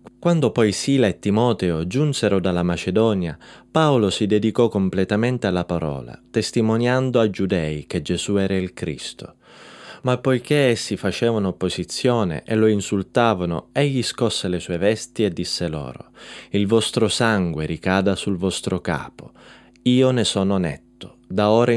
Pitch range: 90-120 Hz